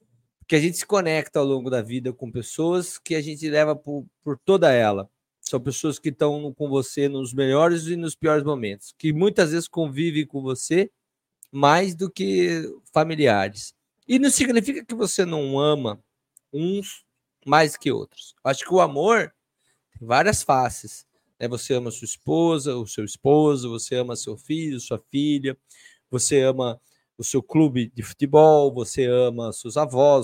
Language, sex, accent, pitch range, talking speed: Portuguese, male, Brazilian, 130-170 Hz, 165 wpm